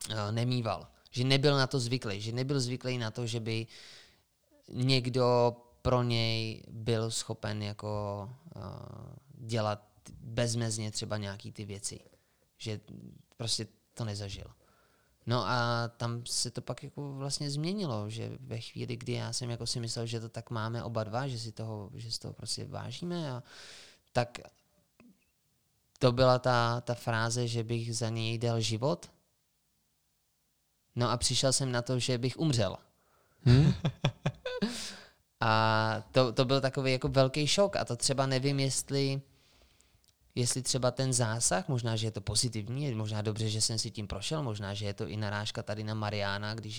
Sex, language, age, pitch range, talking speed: male, Czech, 20-39, 105-130 Hz, 160 wpm